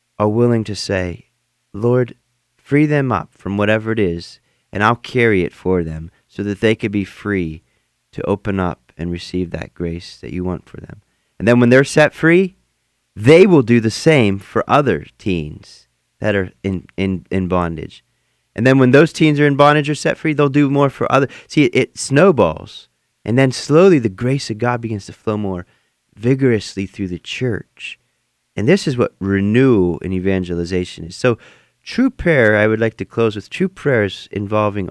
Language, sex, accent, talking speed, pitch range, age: English, male, American, 190 wpm, 95-125 Hz, 30-49